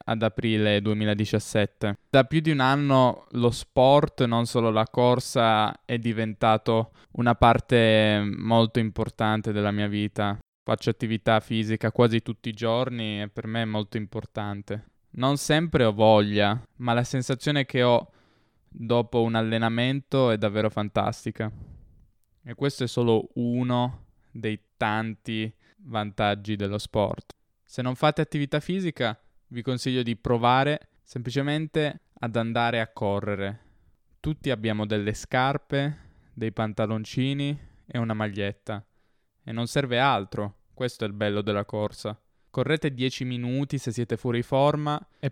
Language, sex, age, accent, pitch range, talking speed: Italian, male, 10-29, native, 110-125 Hz, 135 wpm